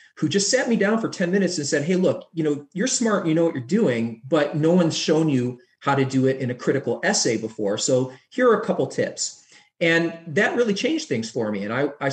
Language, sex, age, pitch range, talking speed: English, male, 30-49, 130-190 Hz, 250 wpm